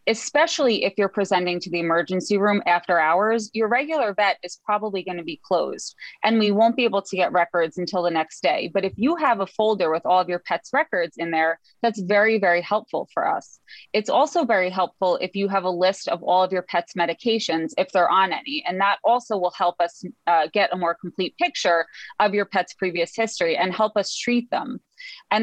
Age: 20-39